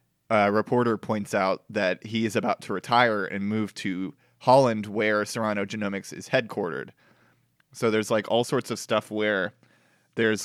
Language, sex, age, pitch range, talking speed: English, male, 30-49, 100-110 Hz, 165 wpm